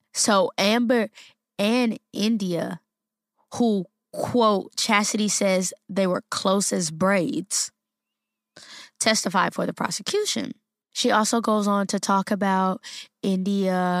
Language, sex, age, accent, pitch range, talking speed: English, female, 10-29, American, 185-225 Hz, 105 wpm